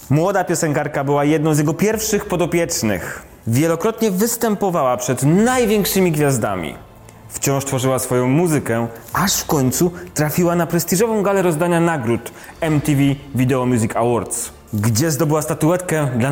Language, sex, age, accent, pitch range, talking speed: Polish, male, 30-49, native, 135-200 Hz, 125 wpm